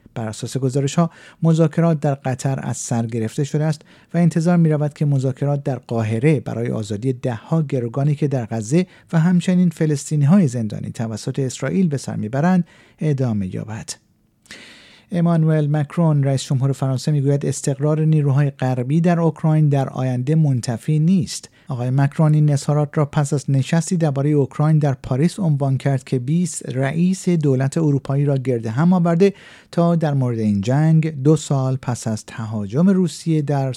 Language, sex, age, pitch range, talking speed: Persian, male, 50-69, 125-160 Hz, 155 wpm